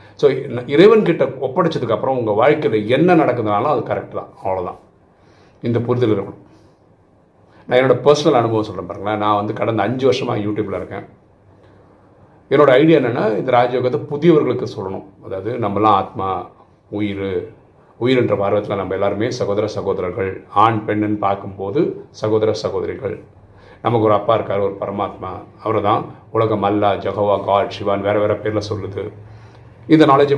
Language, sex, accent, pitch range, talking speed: Tamil, male, native, 105-130 Hz, 135 wpm